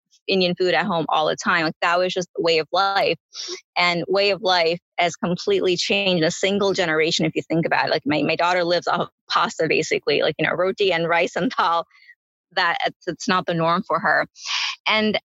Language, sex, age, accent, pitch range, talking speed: English, female, 20-39, American, 170-195 Hz, 215 wpm